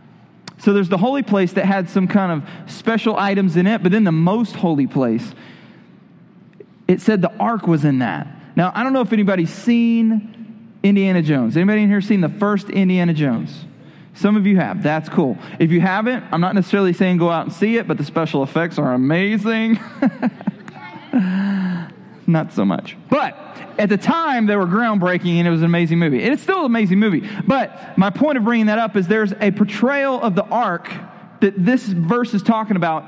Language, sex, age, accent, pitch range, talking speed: English, male, 30-49, American, 180-225 Hz, 200 wpm